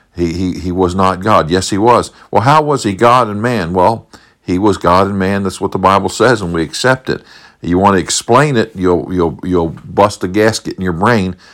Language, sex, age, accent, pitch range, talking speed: English, male, 50-69, American, 95-120 Hz, 235 wpm